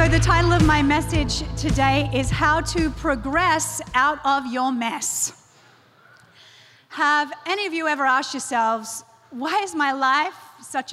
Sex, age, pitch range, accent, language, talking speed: female, 40-59, 225-275 Hz, Australian, English, 150 wpm